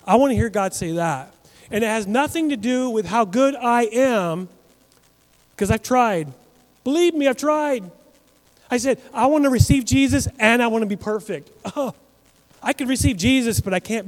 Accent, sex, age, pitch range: American, male, 30-49, 155-230 Hz